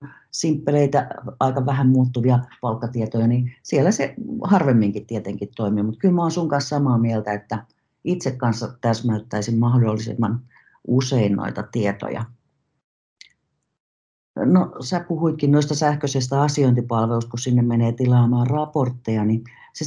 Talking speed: 120 wpm